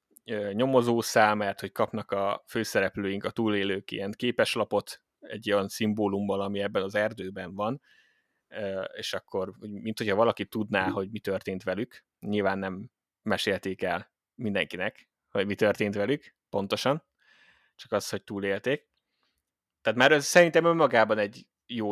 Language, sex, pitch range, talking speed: Hungarian, male, 95-115 Hz, 135 wpm